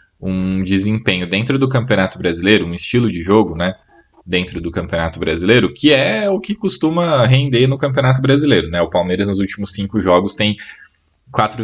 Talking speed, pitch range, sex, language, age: 170 wpm, 90-125 Hz, male, Portuguese, 10-29